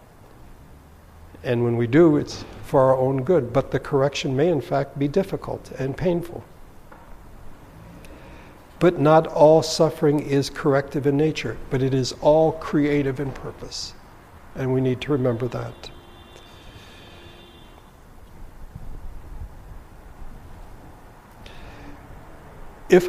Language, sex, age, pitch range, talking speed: English, male, 60-79, 115-145 Hz, 105 wpm